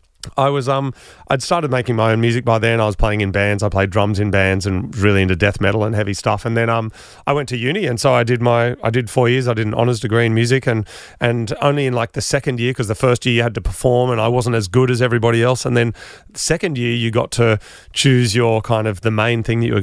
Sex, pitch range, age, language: male, 110-130 Hz, 30-49, English